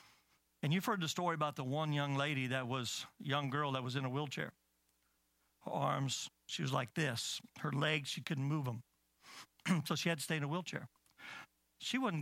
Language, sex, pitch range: English, male, 120-180 Hz